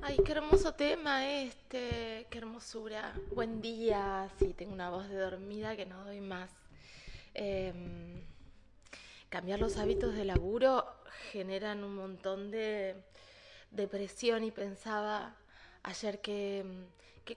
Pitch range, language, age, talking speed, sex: 195-235 Hz, Spanish, 20-39, 120 wpm, female